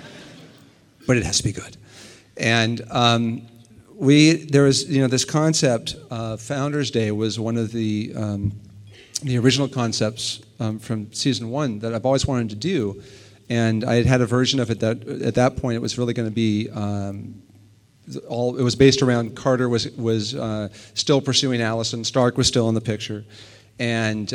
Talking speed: 180 wpm